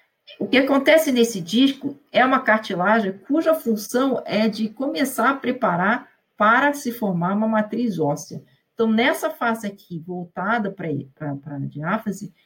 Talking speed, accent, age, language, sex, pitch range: 145 wpm, Brazilian, 40-59, Portuguese, female, 175-230 Hz